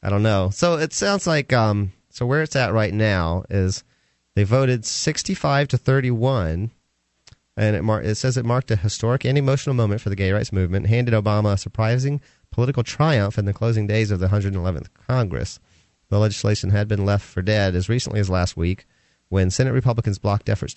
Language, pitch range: English, 95-120 Hz